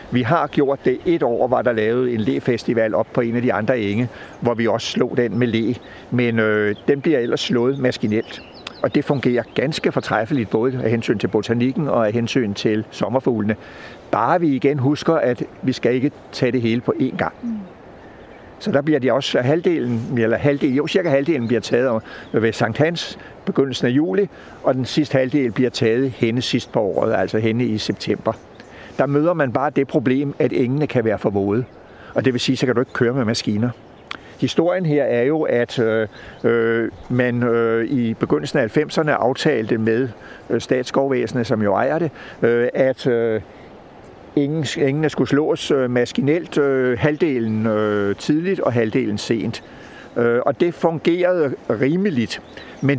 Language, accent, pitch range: Danish, native, 115-145 Hz